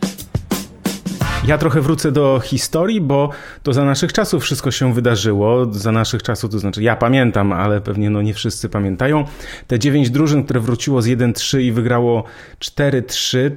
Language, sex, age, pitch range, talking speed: Polish, male, 30-49, 115-135 Hz, 160 wpm